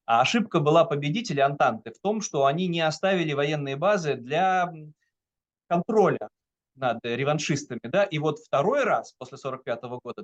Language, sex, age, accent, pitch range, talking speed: Russian, male, 30-49, native, 135-185 Hz, 140 wpm